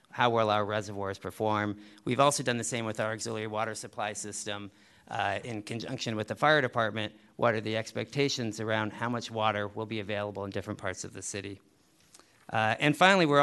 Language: English